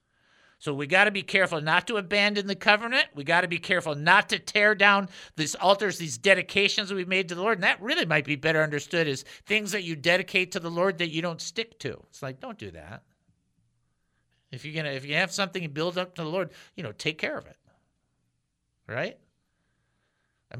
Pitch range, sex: 135-195 Hz, male